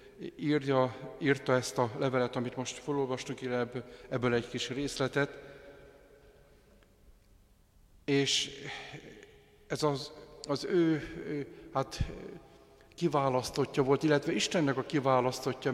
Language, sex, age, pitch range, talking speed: Hungarian, male, 50-69, 120-140 Hz, 90 wpm